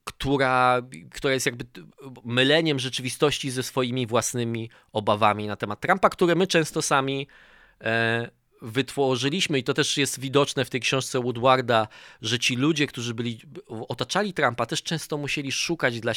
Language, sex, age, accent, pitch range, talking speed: Polish, male, 20-39, native, 120-145 Hz, 150 wpm